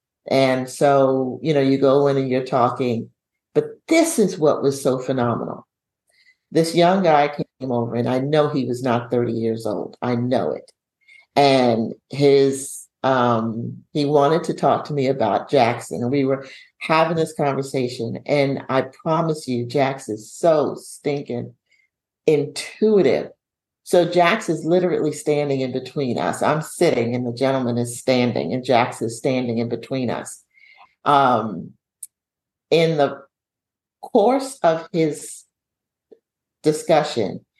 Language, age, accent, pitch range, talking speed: English, 50-69, American, 125-155 Hz, 140 wpm